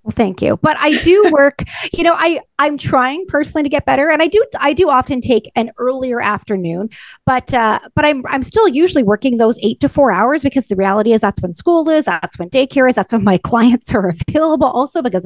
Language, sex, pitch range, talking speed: English, female, 210-285 Hz, 230 wpm